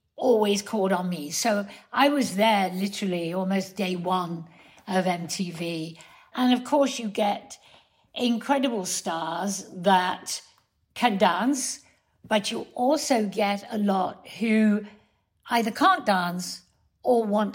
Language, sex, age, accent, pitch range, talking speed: English, female, 60-79, British, 200-275 Hz, 125 wpm